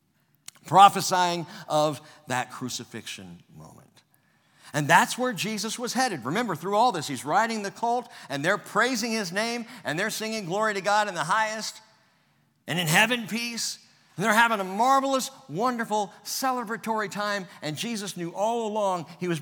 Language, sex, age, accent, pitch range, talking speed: English, male, 50-69, American, 125-205 Hz, 160 wpm